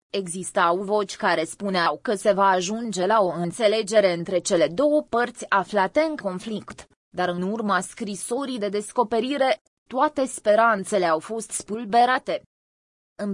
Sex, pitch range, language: female, 190-240 Hz, Romanian